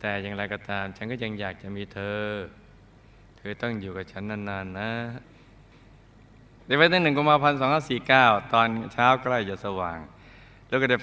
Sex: male